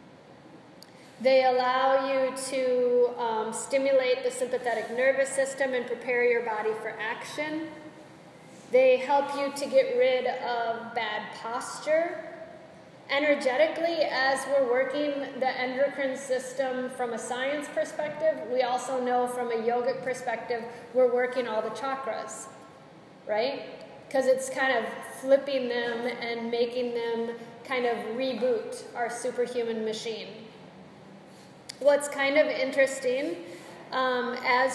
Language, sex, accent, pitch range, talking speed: English, female, American, 240-275 Hz, 120 wpm